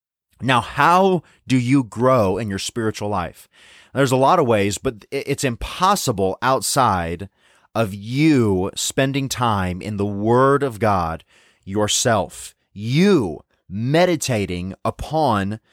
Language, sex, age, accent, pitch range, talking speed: English, male, 30-49, American, 105-145 Hz, 120 wpm